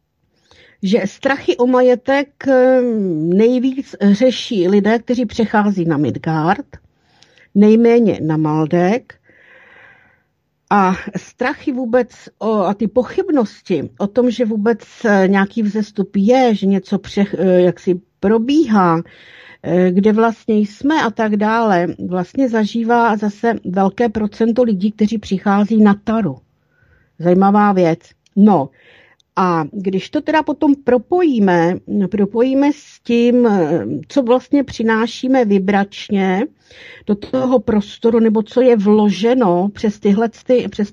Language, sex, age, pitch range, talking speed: Czech, female, 50-69, 195-240 Hz, 105 wpm